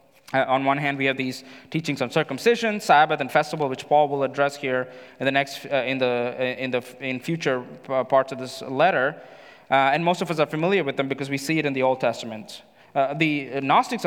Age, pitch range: 20-39, 130-155 Hz